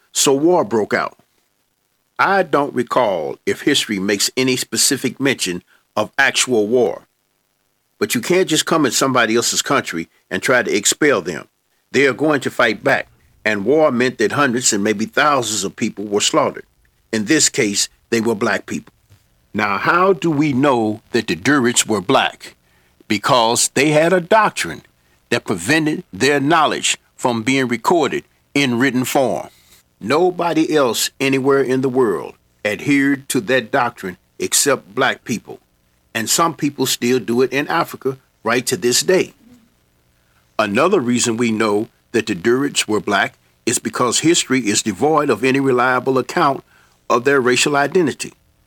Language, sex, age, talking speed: English, male, 60-79, 155 wpm